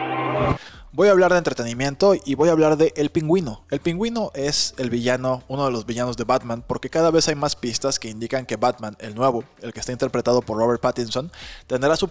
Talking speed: 220 wpm